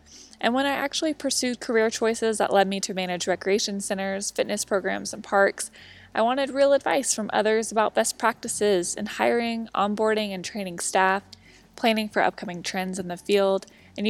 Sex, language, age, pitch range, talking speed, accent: female, English, 20-39, 190-225 Hz, 175 wpm, American